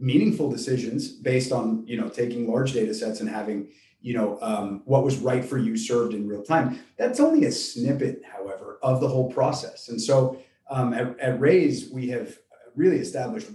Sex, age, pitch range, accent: male, 30-49, 115-135 Hz, American